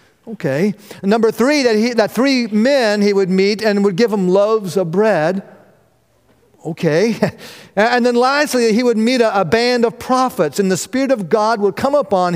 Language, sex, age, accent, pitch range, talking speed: English, male, 50-69, American, 170-225 Hz, 190 wpm